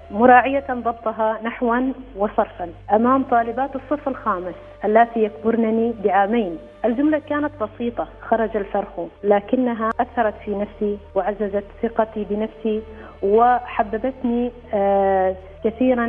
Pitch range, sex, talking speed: 205-245 Hz, female, 95 wpm